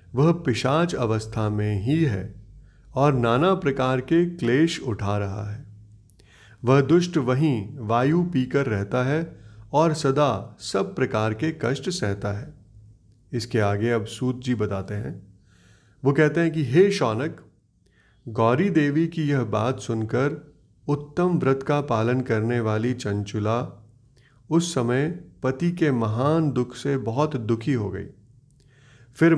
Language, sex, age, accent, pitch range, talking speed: Hindi, male, 30-49, native, 110-150 Hz, 135 wpm